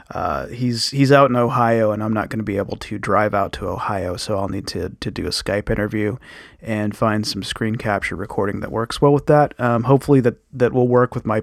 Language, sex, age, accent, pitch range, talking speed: English, male, 30-49, American, 110-125 Hz, 240 wpm